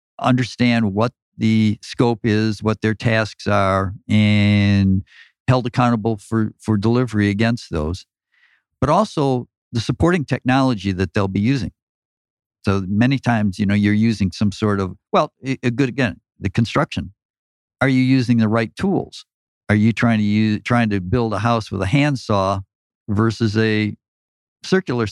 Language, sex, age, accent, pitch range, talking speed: English, male, 50-69, American, 100-125 Hz, 155 wpm